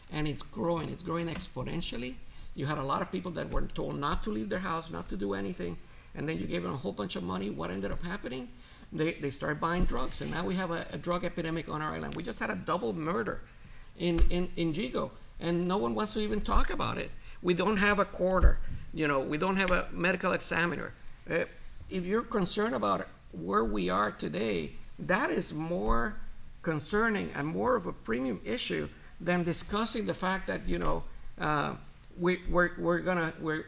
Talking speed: 210 wpm